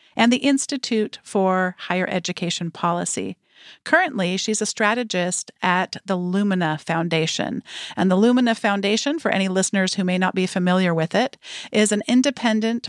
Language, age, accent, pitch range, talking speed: English, 50-69, American, 185-225 Hz, 150 wpm